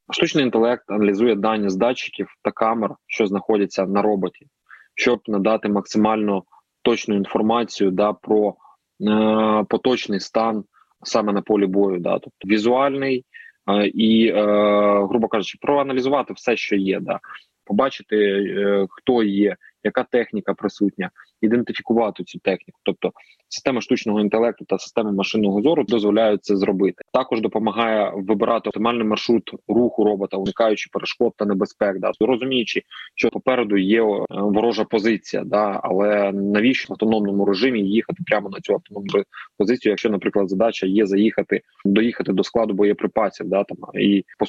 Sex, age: male, 20-39